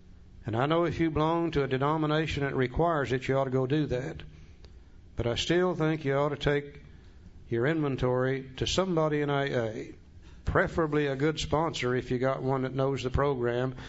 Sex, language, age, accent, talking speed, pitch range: male, English, 60-79, American, 190 wpm, 120-150 Hz